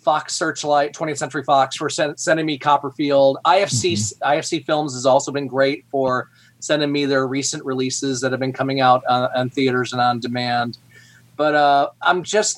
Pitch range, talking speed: 130-160 Hz, 175 wpm